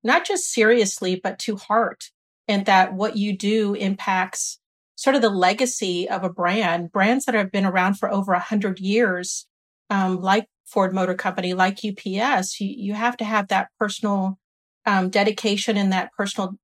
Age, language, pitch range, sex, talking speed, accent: 40-59, English, 190-225 Hz, female, 175 wpm, American